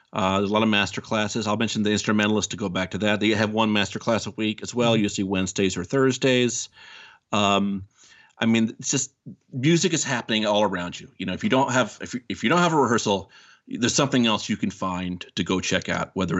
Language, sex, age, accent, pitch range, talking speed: English, male, 40-59, American, 95-115 Hz, 240 wpm